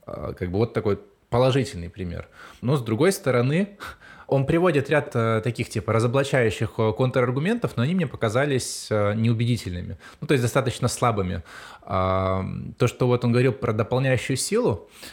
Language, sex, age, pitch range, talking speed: Russian, male, 20-39, 100-125 Hz, 140 wpm